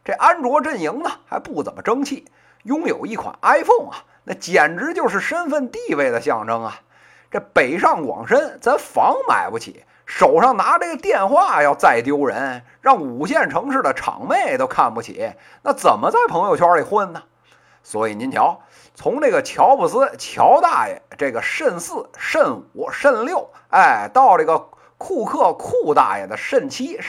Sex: male